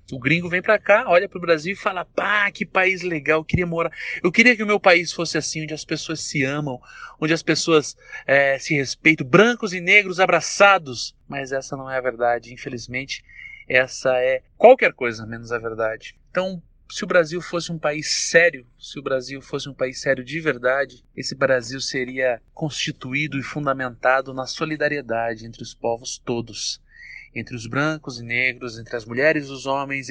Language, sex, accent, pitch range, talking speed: Portuguese, male, Brazilian, 130-170 Hz, 190 wpm